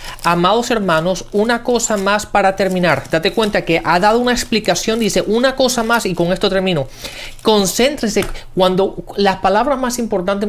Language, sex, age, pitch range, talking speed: Spanish, male, 30-49, 170-210 Hz, 160 wpm